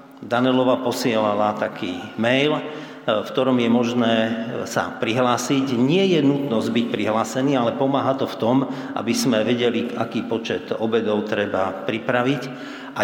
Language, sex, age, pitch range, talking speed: Slovak, male, 50-69, 105-125 Hz, 135 wpm